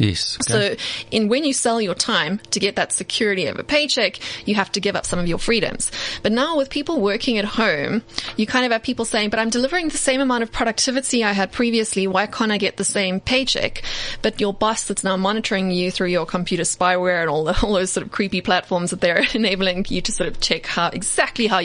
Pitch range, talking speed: 185-230 Hz, 235 wpm